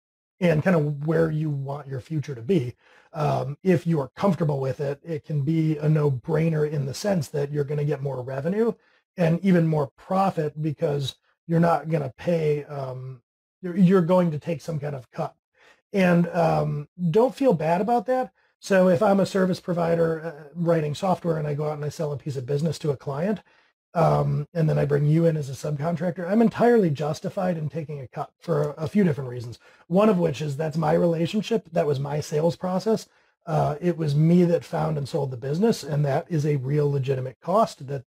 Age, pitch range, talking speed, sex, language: 30-49, 145-175 Hz, 205 wpm, male, English